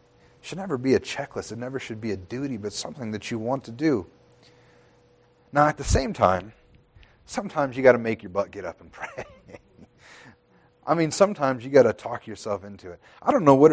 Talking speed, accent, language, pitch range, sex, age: 210 wpm, American, English, 115-165 Hz, male, 30-49